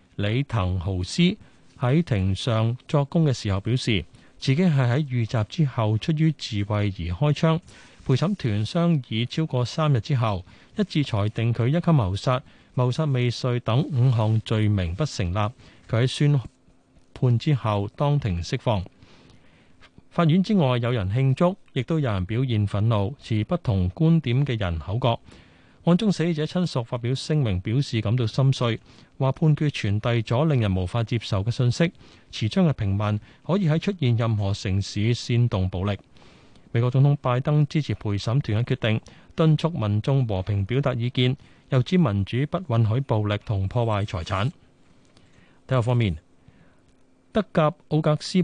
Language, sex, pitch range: Chinese, male, 105-145 Hz